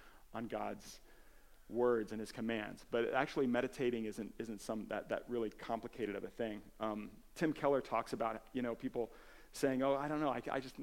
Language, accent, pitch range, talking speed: English, American, 120-150 Hz, 190 wpm